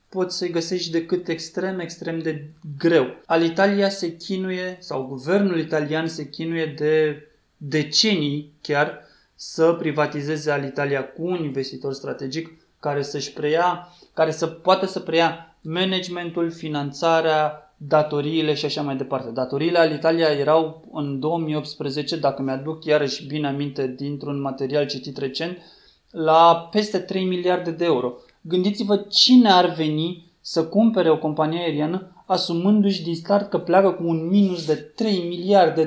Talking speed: 145 wpm